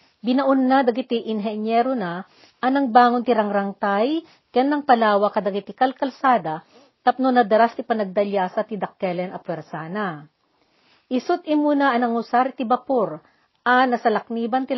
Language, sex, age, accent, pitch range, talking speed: Filipino, female, 40-59, native, 195-250 Hz, 125 wpm